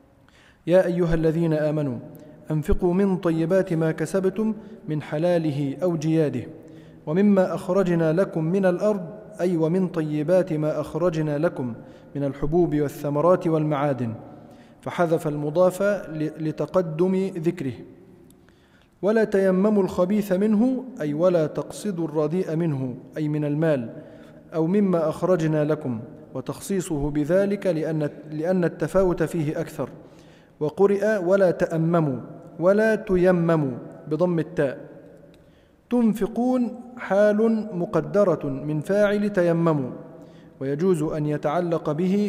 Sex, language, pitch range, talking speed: male, Arabic, 150-190 Hz, 100 wpm